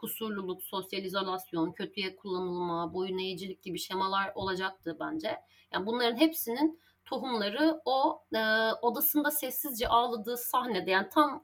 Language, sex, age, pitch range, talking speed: Turkish, female, 30-49, 195-265 Hz, 120 wpm